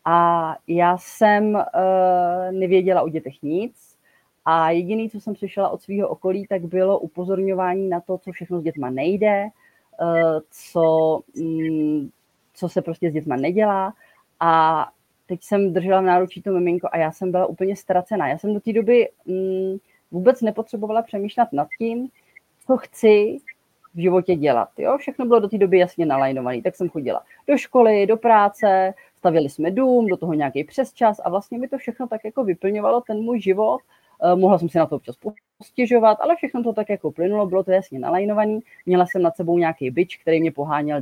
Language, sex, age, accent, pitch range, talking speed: Czech, female, 30-49, native, 170-215 Hz, 175 wpm